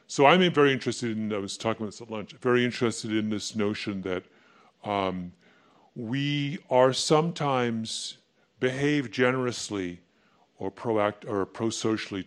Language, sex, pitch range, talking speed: English, female, 110-145 Hz, 135 wpm